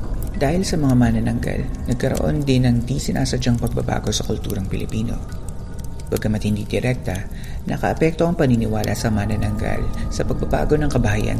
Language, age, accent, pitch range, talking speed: Filipino, 40-59, native, 105-120 Hz, 130 wpm